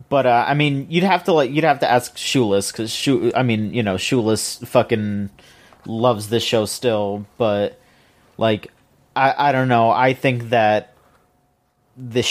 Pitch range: 115-165 Hz